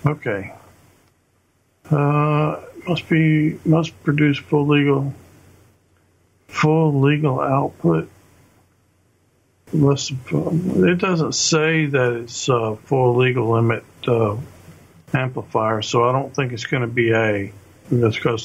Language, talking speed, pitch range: English, 110 wpm, 100-140 Hz